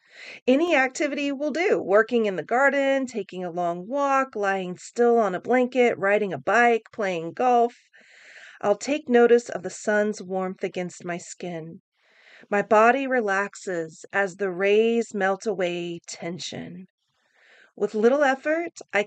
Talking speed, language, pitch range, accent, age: 140 wpm, English, 195-245 Hz, American, 40-59